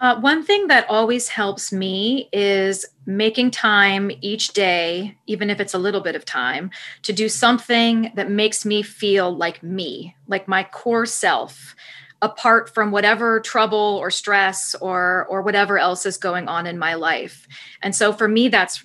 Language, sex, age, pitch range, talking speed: English, female, 30-49, 185-220 Hz, 170 wpm